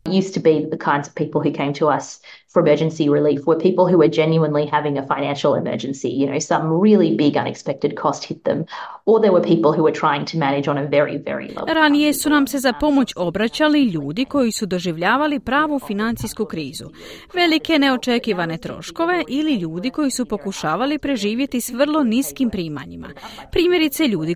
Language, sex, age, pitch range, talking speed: Croatian, female, 30-49, 170-275 Hz, 170 wpm